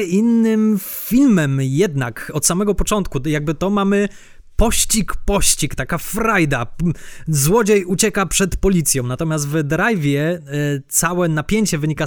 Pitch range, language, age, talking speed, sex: 155-195 Hz, Polish, 20-39, 120 wpm, male